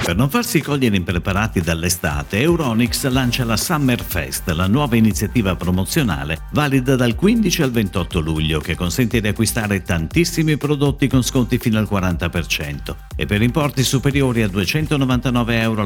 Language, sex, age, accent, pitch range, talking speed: Italian, male, 50-69, native, 90-130 Hz, 145 wpm